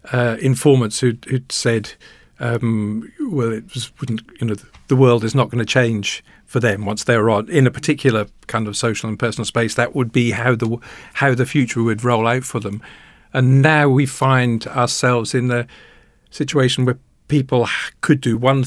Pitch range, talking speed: 115-135 Hz, 190 wpm